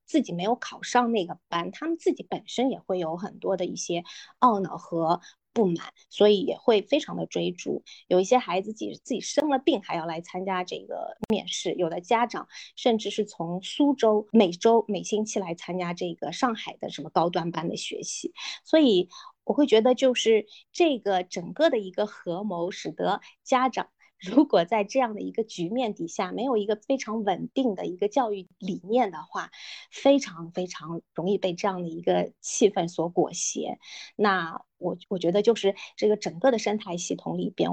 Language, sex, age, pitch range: Chinese, female, 20-39, 180-245 Hz